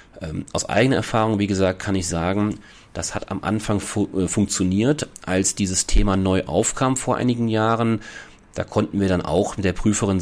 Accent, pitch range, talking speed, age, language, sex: German, 90-110 Hz, 190 wpm, 30-49, German, male